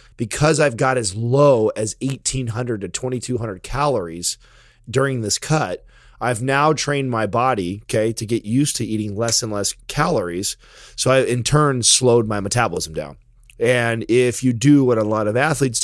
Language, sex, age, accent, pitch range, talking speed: English, male, 30-49, American, 110-130 Hz, 170 wpm